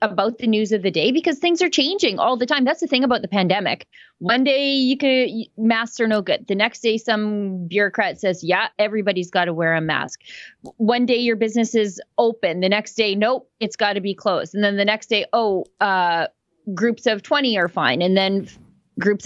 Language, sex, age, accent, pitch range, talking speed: English, female, 30-49, American, 195-260 Hz, 215 wpm